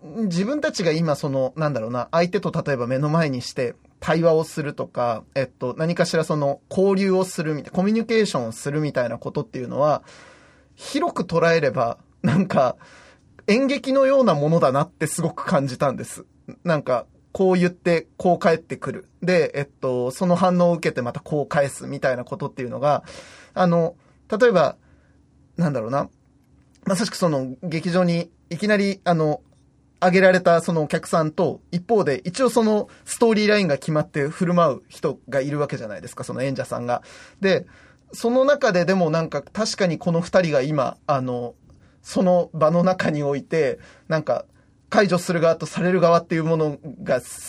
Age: 20-39